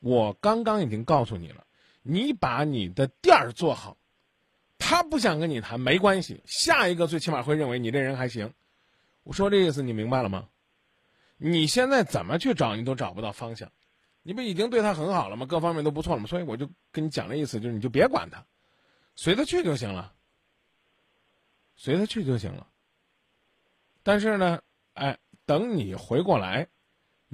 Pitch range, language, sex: 115-180 Hz, Chinese, male